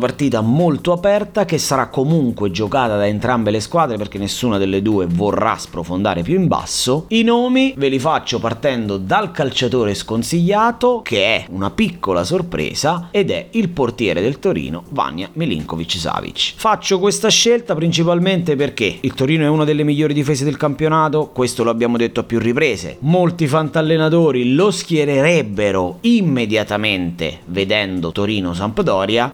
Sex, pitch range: male, 115-190 Hz